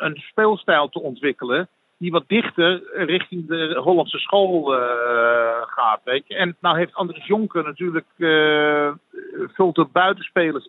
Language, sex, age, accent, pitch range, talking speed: Dutch, male, 50-69, Dutch, 140-185 Hz, 135 wpm